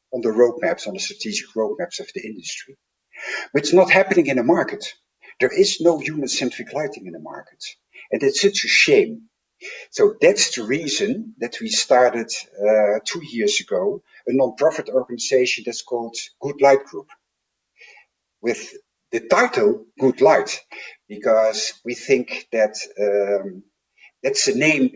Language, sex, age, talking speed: English, male, 50-69, 155 wpm